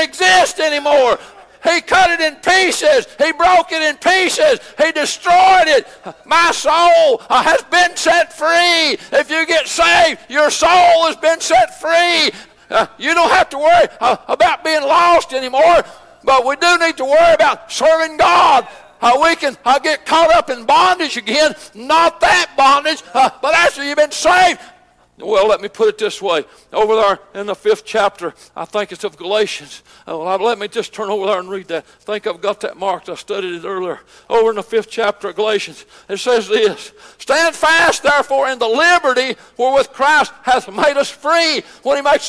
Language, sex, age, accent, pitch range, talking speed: English, male, 60-79, American, 250-335 Hz, 185 wpm